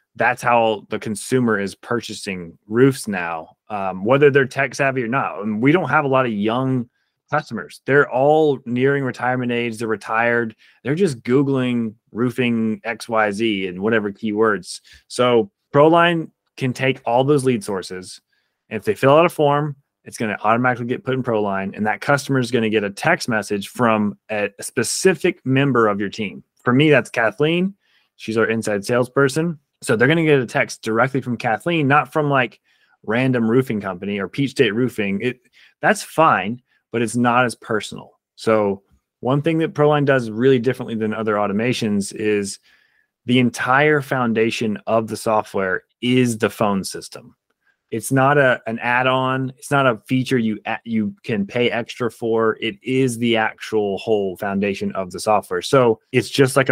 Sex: male